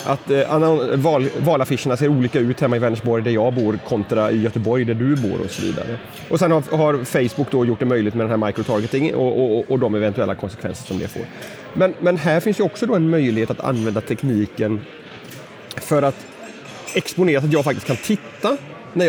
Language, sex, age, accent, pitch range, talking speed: Swedish, male, 30-49, native, 125-175 Hz, 205 wpm